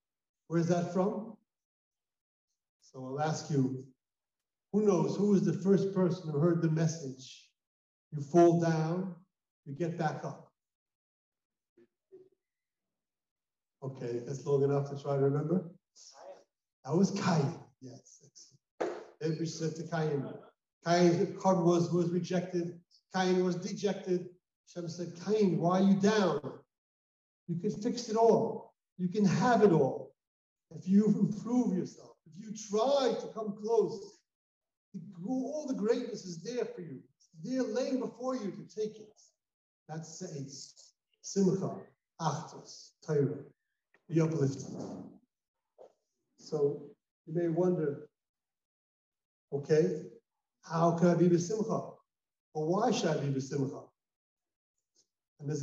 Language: English